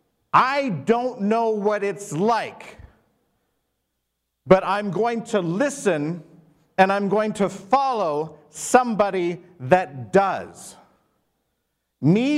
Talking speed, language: 95 wpm, English